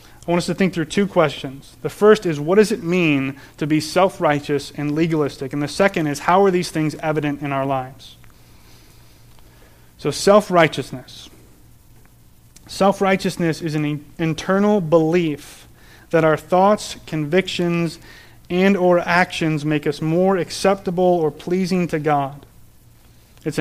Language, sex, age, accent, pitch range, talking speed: English, male, 30-49, American, 140-180 Hz, 140 wpm